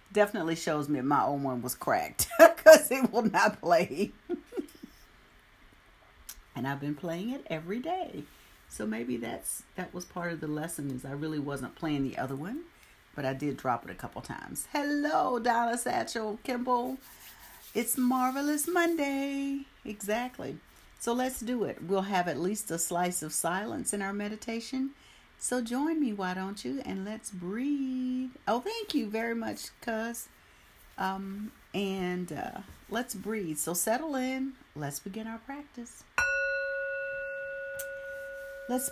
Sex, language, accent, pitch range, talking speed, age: female, English, American, 160-250 Hz, 145 wpm, 50-69